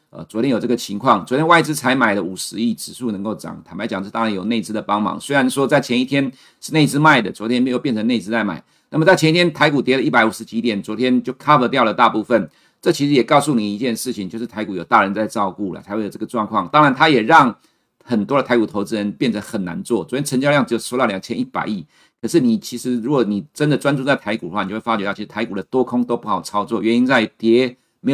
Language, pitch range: Chinese, 110-140 Hz